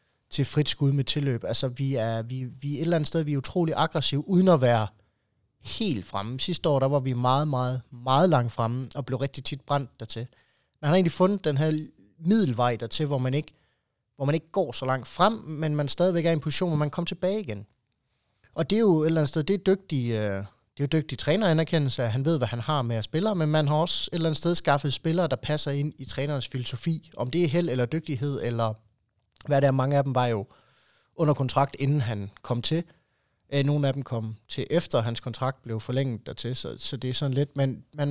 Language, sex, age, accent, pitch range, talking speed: Danish, male, 20-39, native, 125-160 Hz, 235 wpm